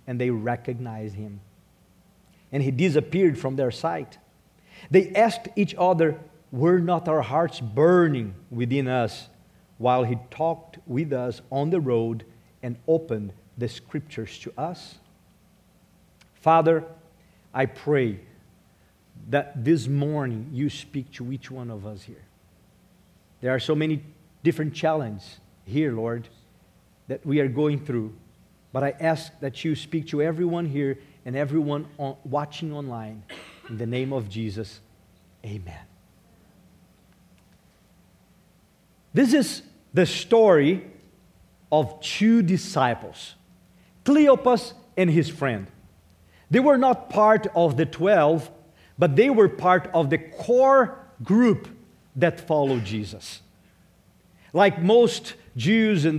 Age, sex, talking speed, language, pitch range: 50-69, male, 120 wpm, English, 115-170 Hz